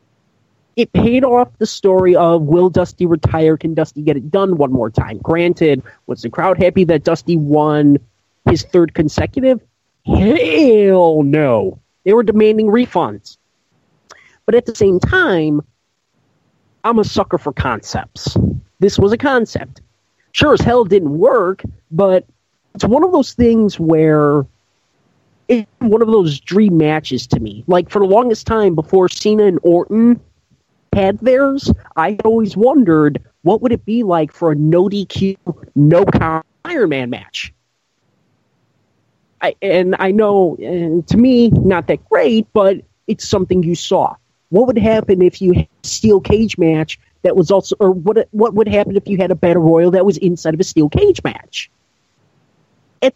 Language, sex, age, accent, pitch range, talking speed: English, male, 30-49, American, 160-215 Hz, 160 wpm